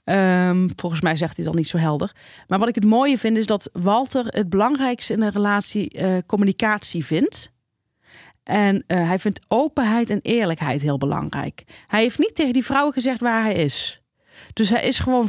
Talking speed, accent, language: 190 wpm, Dutch, Dutch